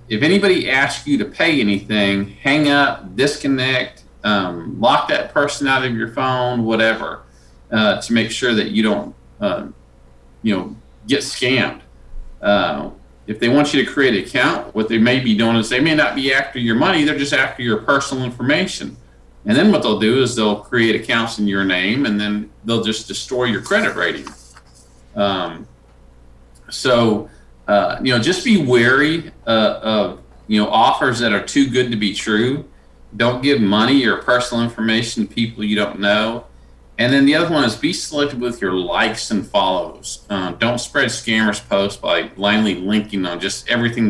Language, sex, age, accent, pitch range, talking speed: English, male, 40-59, American, 95-130 Hz, 180 wpm